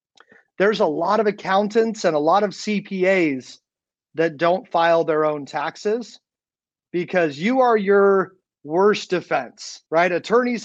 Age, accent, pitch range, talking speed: 30-49, American, 155-200 Hz, 135 wpm